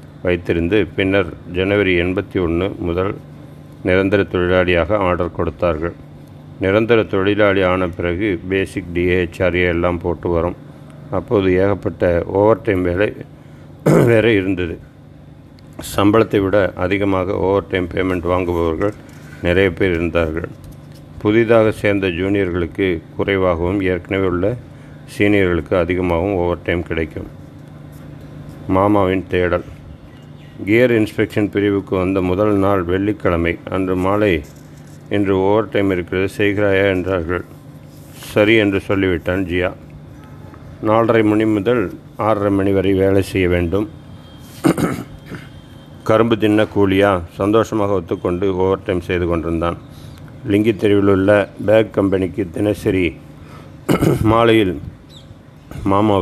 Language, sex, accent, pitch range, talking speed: Tamil, male, native, 90-105 Hz, 100 wpm